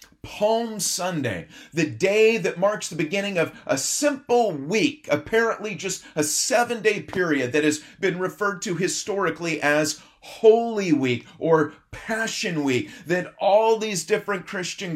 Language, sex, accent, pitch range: English, male, American, 130-180 Hz